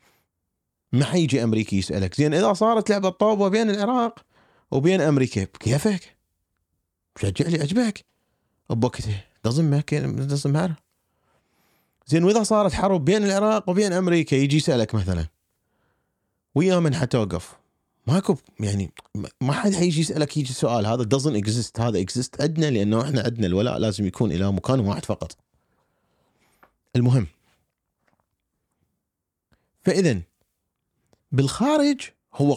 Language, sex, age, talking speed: Arabic, male, 30-49, 120 wpm